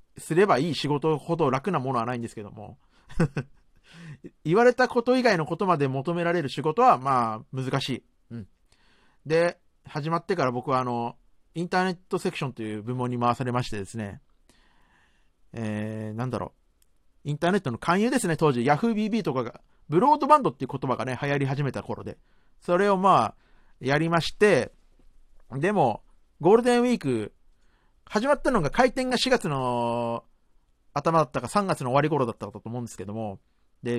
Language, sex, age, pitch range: Japanese, male, 40-59, 120-185 Hz